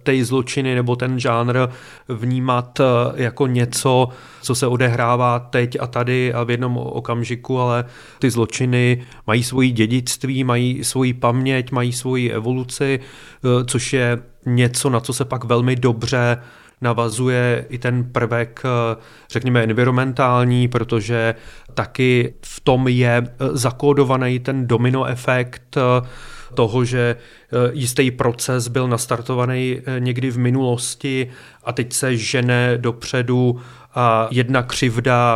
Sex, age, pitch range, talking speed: male, 30-49, 120-130 Hz, 115 wpm